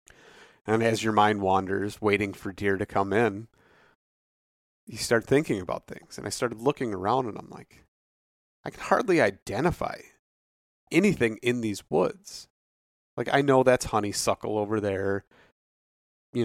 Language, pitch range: English, 100-120 Hz